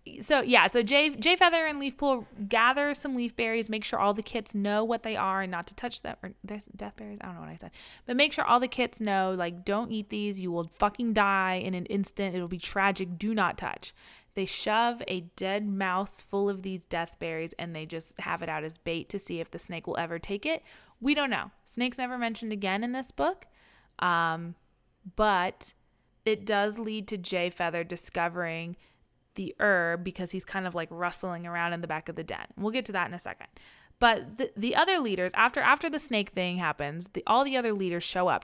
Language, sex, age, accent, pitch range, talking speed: English, female, 20-39, American, 175-235 Hz, 230 wpm